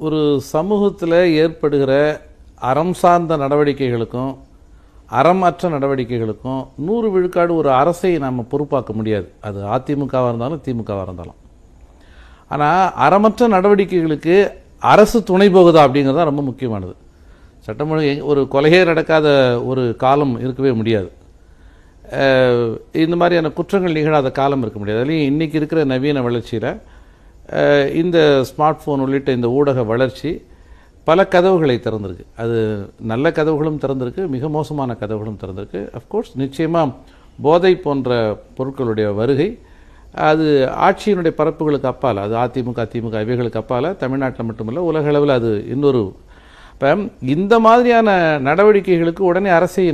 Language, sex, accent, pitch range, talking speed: Tamil, male, native, 110-160 Hz, 110 wpm